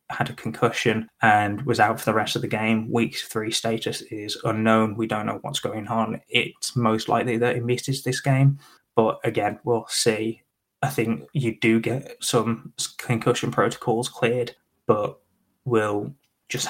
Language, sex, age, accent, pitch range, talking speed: English, male, 10-29, British, 110-120 Hz, 170 wpm